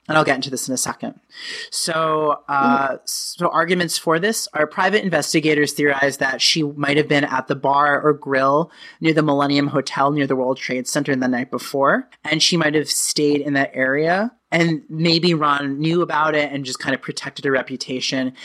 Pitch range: 135-165 Hz